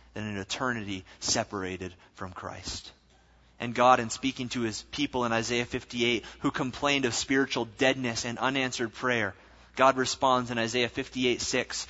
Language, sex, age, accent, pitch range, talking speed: English, male, 30-49, American, 105-135 Hz, 150 wpm